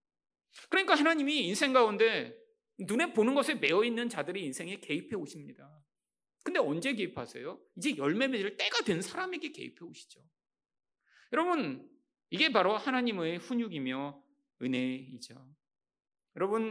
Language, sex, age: Korean, male, 40-59